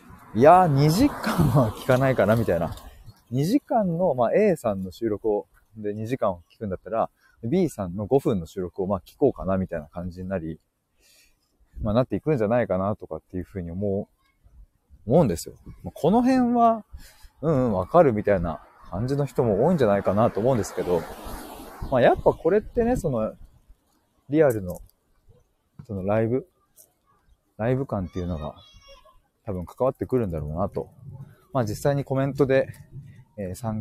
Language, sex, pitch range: Japanese, male, 95-145 Hz